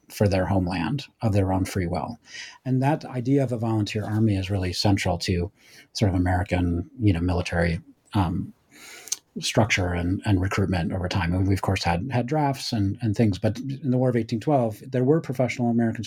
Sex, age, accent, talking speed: male, 40-59, American, 200 wpm